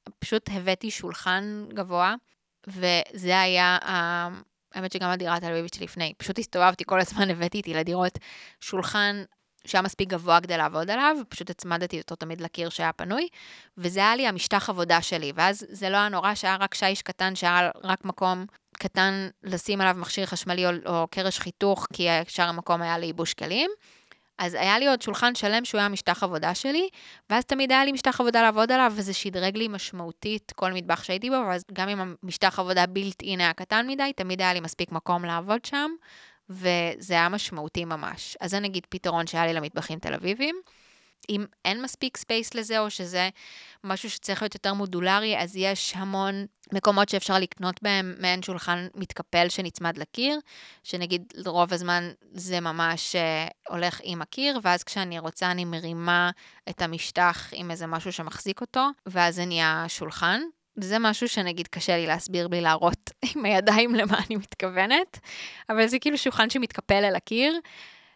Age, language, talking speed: 20-39, Hebrew, 165 wpm